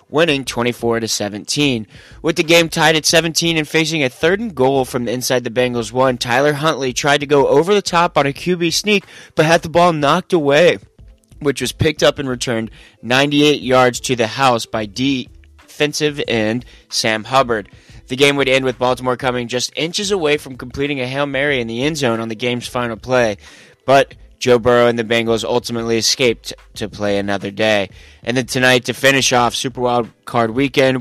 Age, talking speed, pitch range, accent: 20-39, 195 wpm, 115-140 Hz, American